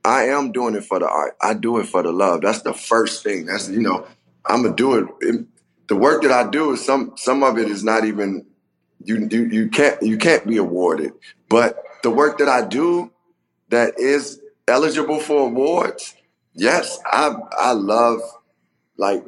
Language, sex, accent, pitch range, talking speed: English, male, American, 105-130 Hz, 190 wpm